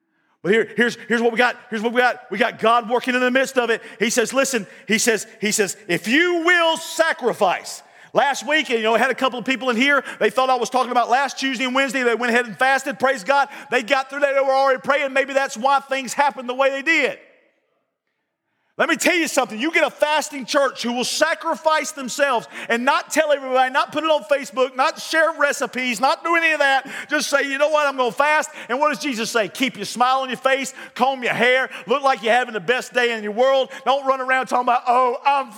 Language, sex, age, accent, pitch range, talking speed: English, male, 40-59, American, 245-295 Hz, 250 wpm